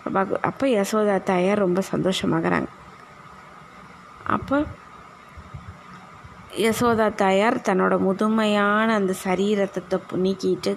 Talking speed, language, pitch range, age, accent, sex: 70 wpm, Tamil, 185-210 Hz, 20-39, native, female